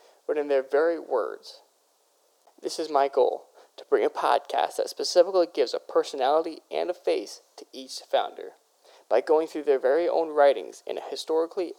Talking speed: 175 wpm